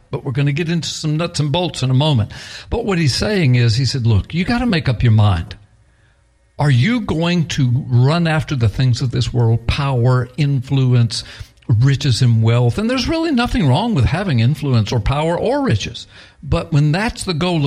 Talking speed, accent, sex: 205 wpm, American, male